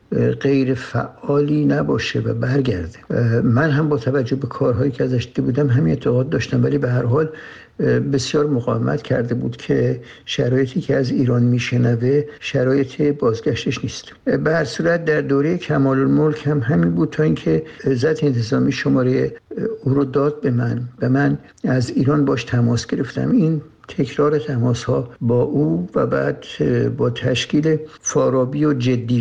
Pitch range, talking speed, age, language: 120-145 Hz, 145 wpm, 60-79, Persian